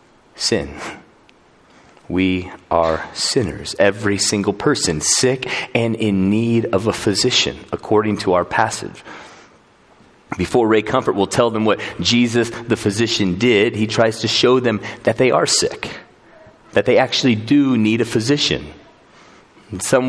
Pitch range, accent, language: 100-120 Hz, American, English